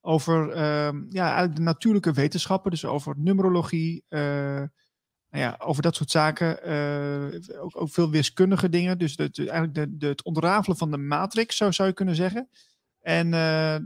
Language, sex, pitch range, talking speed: Dutch, male, 150-180 Hz, 180 wpm